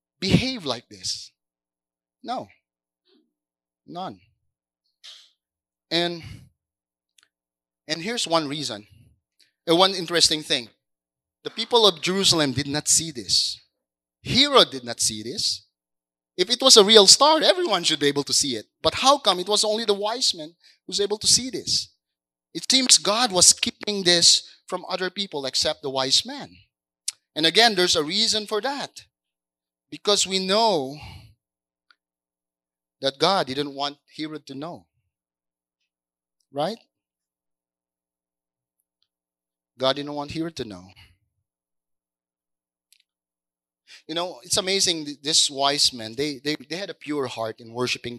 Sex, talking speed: male, 135 wpm